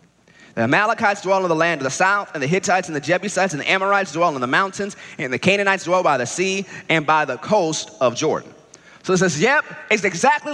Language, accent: English, American